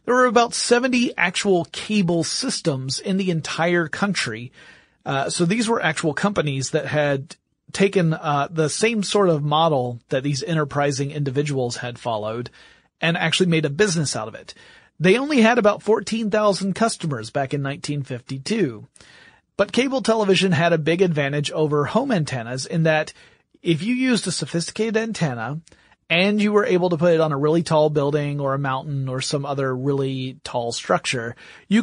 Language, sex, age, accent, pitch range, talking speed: English, male, 30-49, American, 145-200 Hz, 170 wpm